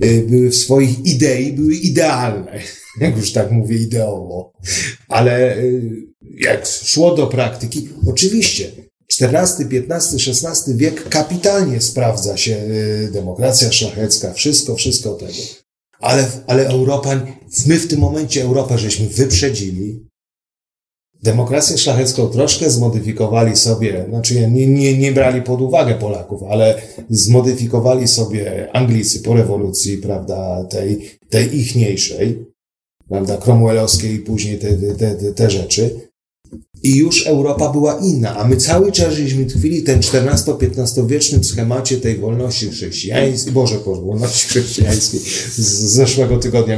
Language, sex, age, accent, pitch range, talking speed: Polish, male, 40-59, native, 105-135 Hz, 120 wpm